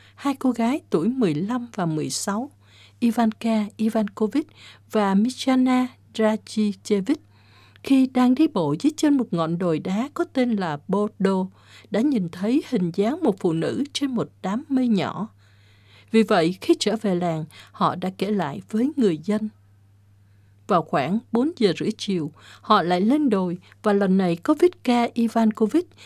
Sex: female